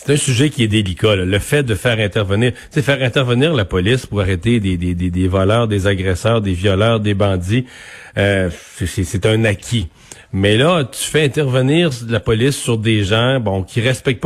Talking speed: 200 wpm